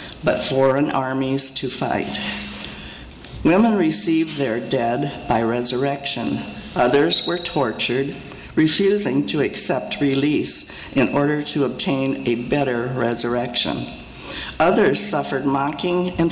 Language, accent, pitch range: English, American, 130-160 Hz